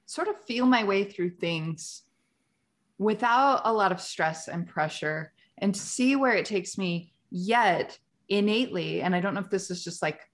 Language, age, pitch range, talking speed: English, 20-39, 170-205 Hz, 185 wpm